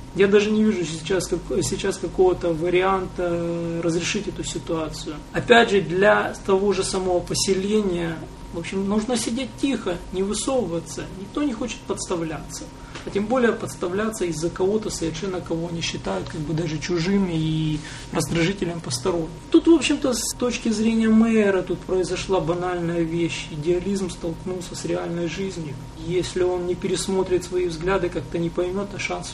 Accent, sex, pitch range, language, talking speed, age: native, male, 165-195 Hz, Russian, 155 wpm, 30-49